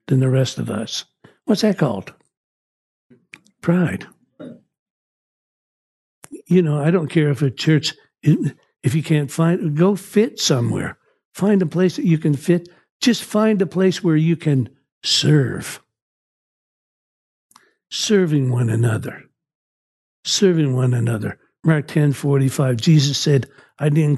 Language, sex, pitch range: English, male, 140-170 Hz